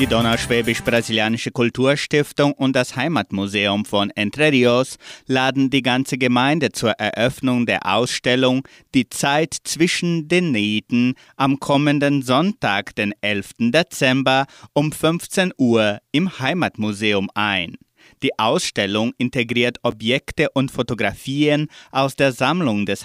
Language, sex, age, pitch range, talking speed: German, male, 30-49, 110-145 Hz, 115 wpm